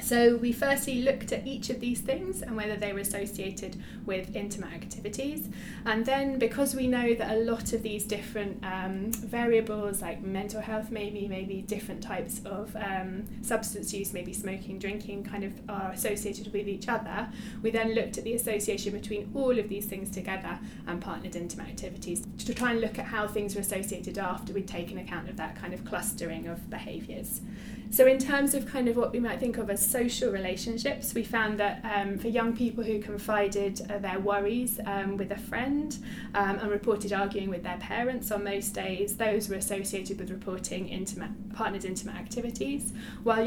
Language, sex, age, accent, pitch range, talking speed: English, female, 20-39, British, 200-230 Hz, 190 wpm